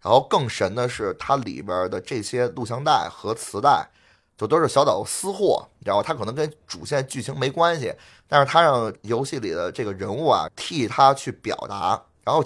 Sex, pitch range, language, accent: male, 105-155 Hz, Chinese, native